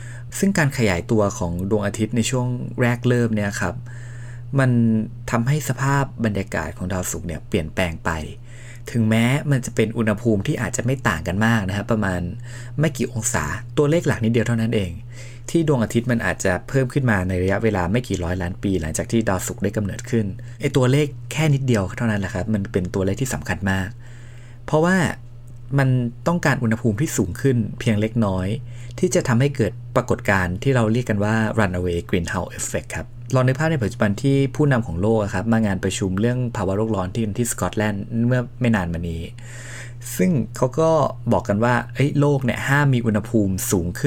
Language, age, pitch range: Thai, 20-39, 105-125 Hz